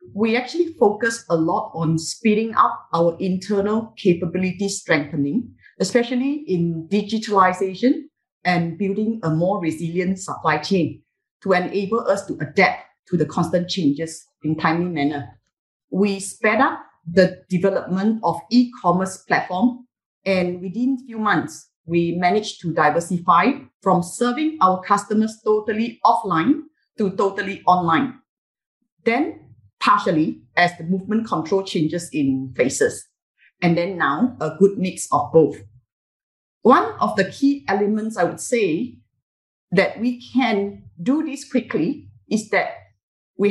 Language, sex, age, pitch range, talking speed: English, female, 30-49, 170-225 Hz, 130 wpm